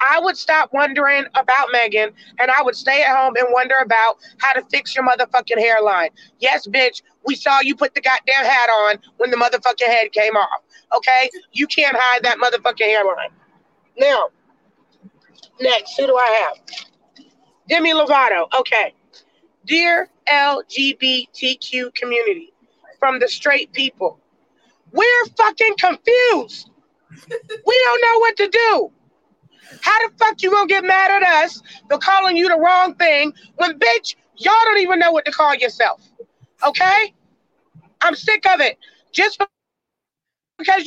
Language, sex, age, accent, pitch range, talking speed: English, female, 30-49, American, 255-375 Hz, 150 wpm